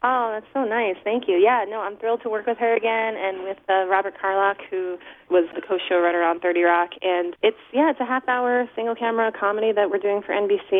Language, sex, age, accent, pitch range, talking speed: English, female, 30-49, American, 165-220 Hz, 235 wpm